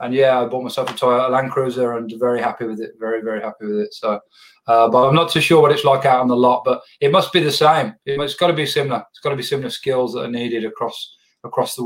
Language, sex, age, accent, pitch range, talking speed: English, male, 20-39, British, 115-135 Hz, 280 wpm